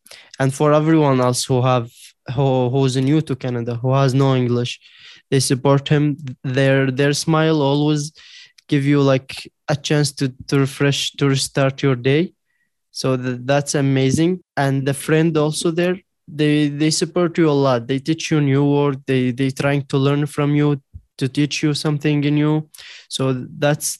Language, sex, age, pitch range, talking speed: English, male, 20-39, 135-155 Hz, 170 wpm